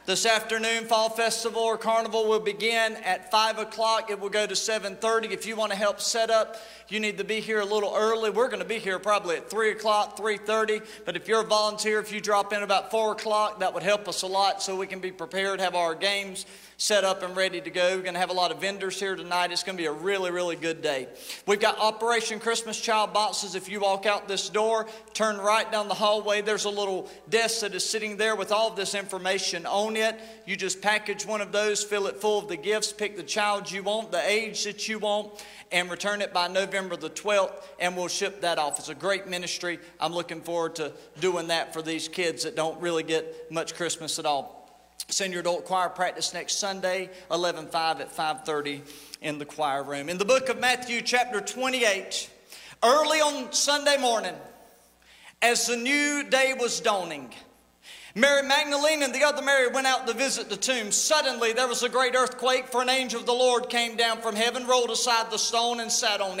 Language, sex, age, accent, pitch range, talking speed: English, male, 40-59, American, 185-225 Hz, 220 wpm